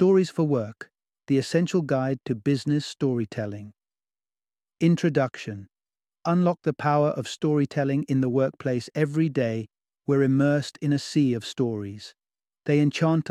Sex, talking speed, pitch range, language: male, 130 wpm, 125-150 Hz, English